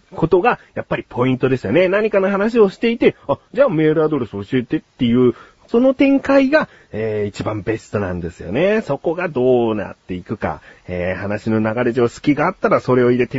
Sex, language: male, Japanese